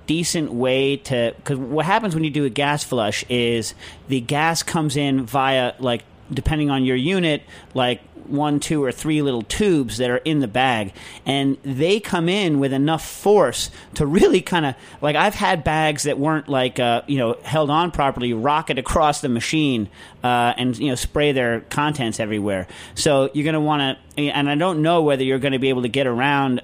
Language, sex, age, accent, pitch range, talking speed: English, male, 40-59, American, 125-155 Hz, 205 wpm